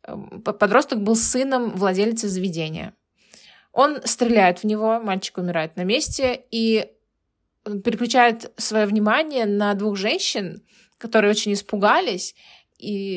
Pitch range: 195-230 Hz